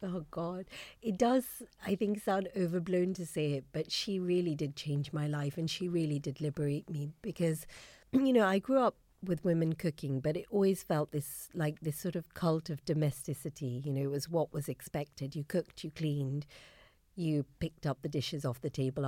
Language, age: English, 50-69